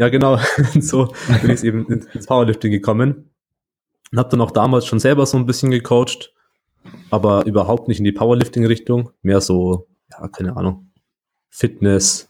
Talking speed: 155 wpm